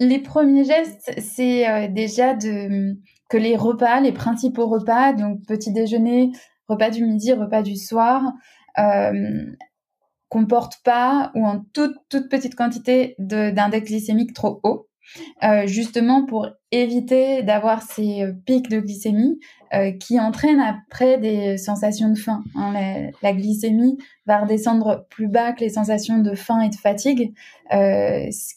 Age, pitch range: 20-39, 205-245 Hz